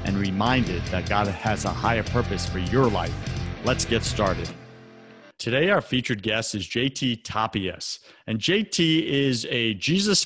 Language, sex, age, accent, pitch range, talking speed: English, male, 40-59, American, 100-130 Hz, 150 wpm